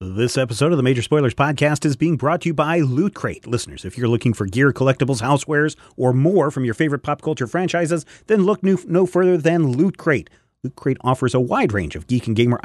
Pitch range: 115-160 Hz